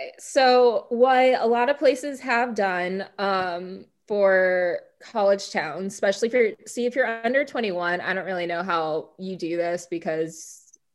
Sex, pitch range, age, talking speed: female, 170-205 Hz, 20-39, 160 wpm